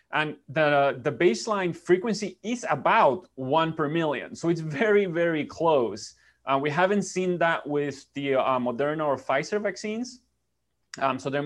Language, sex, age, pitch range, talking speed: English, male, 20-39, 130-170 Hz, 155 wpm